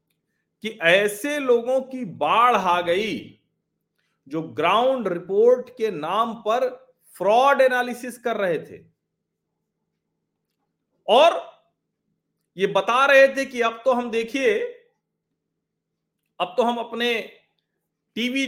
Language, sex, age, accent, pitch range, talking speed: Hindi, male, 40-59, native, 165-240 Hz, 105 wpm